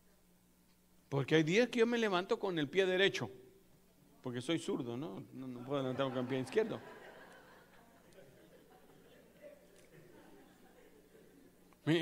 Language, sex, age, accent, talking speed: Spanish, male, 60-79, Mexican, 125 wpm